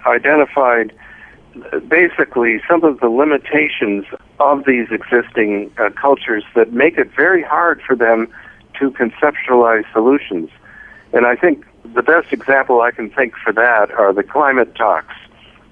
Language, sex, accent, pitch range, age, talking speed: French, male, American, 110-130 Hz, 60-79, 135 wpm